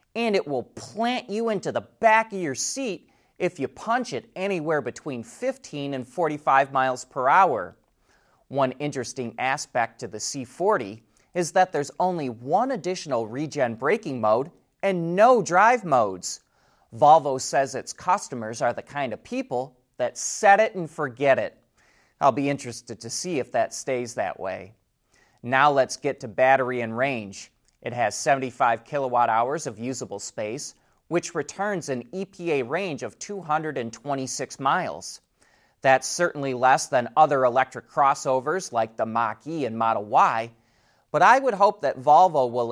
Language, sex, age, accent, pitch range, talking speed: English, male, 30-49, American, 125-175 Hz, 155 wpm